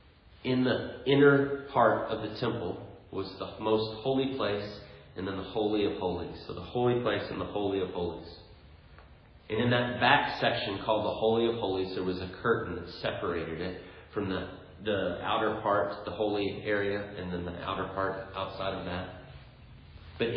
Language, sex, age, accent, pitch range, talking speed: English, male, 30-49, American, 95-115 Hz, 180 wpm